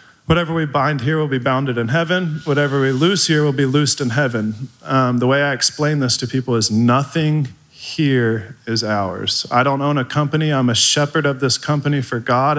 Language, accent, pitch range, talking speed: English, American, 115-135 Hz, 210 wpm